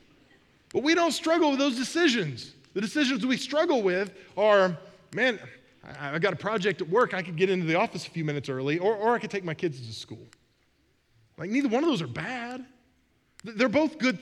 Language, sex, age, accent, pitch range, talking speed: English, male, 20-39, American, 170-255 Hz, 210 wpm